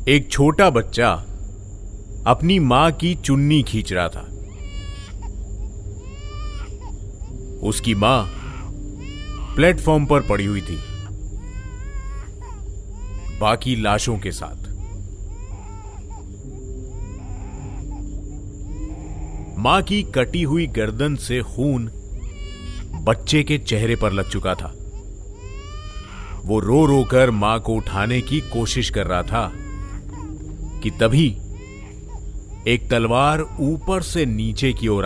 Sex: male